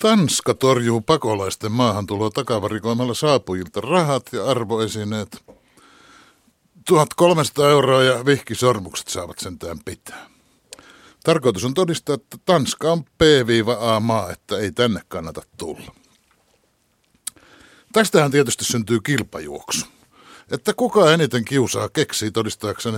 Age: 60-79